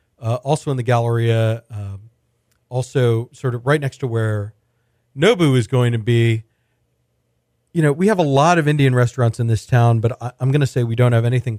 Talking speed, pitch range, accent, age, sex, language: 205 wpm, 110-130 Hz, American, 40-59, male, English